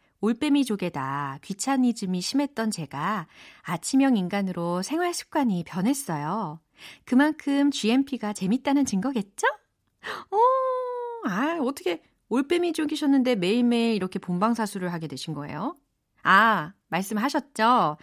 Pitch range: 170-270 Hz